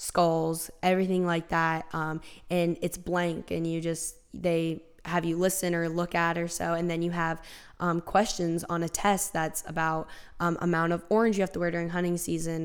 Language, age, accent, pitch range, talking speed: English, 10-29, American, 165-180 Hz, 200 wpm